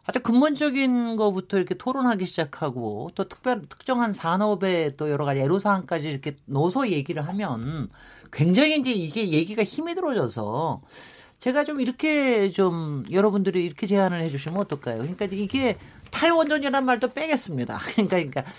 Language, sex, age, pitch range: Korean, male, 40-59, 165-255 Hz